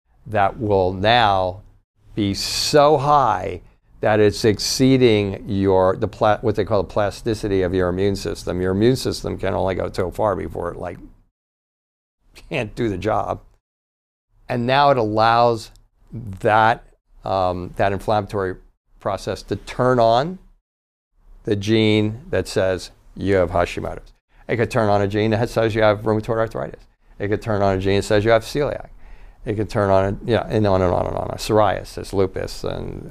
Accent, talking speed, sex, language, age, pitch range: American, 170 wpm, male, English, 50-69, 95-110 Hz